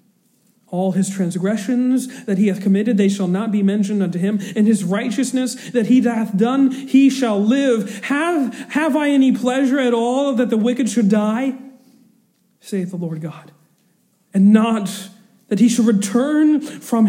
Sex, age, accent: male, 40-59, American